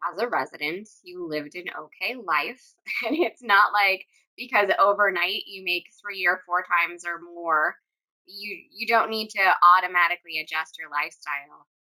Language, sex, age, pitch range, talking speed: English, female, 20-39, 170-220 Hz, 155 wpm